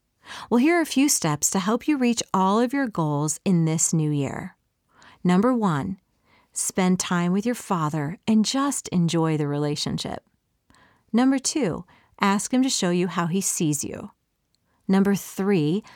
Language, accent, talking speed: English, American, 160 wpm